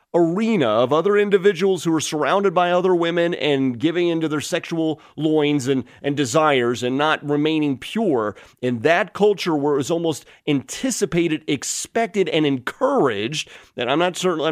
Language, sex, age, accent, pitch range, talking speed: English, male, 30-49, American, 130-180 Hz, 155 wpm